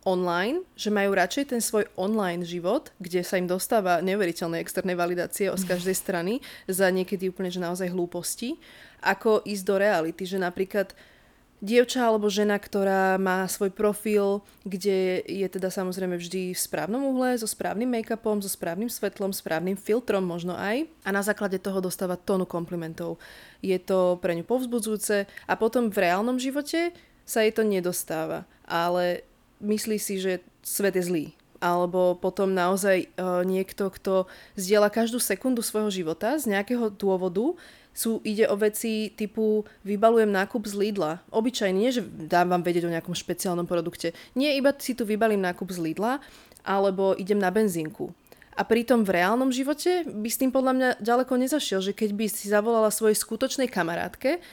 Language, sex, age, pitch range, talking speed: Slovak, female, 20-39, 185-225 Hz, 160 wpm